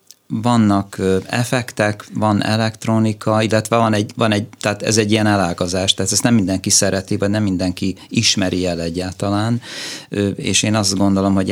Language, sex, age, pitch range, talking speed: Hungarian, male, 40-59, 95-110 Hz, 155 wpm